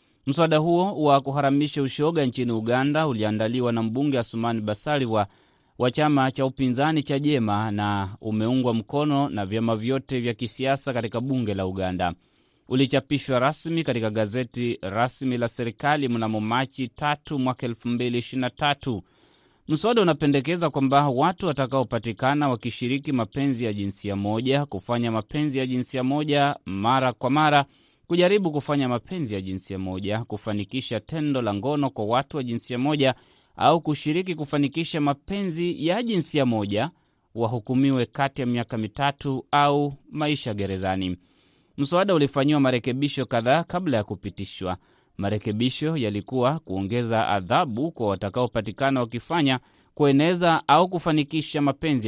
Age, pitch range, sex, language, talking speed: 30-49, 115-145 Hz, male, Swahili, 130 wpm